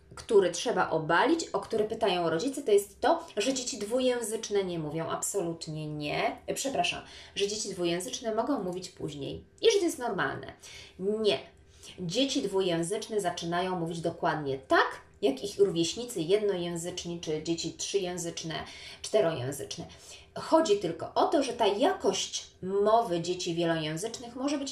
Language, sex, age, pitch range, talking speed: Polish, female, 20-39, 175-255 Hz, 135 wpm